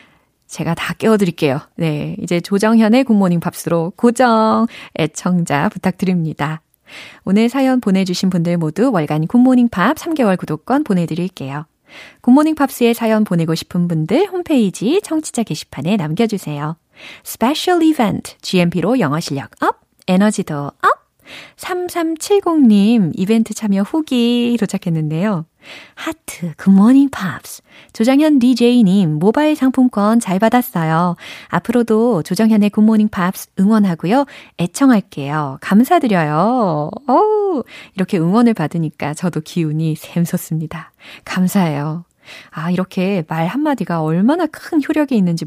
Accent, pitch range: native, 170-250 Hz